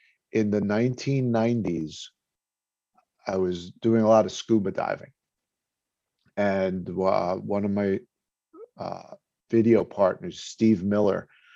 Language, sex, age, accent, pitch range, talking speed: English, male, 50-69, American, 100-115 Hz, 110 wpm